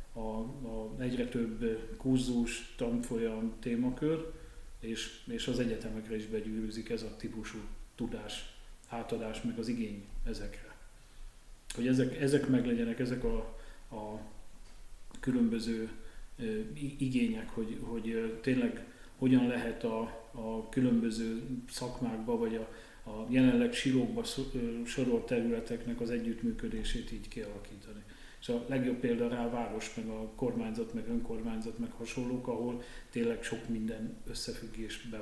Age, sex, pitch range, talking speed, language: 40-59, male, 110-130 Hz, 115 wpm, Hungarian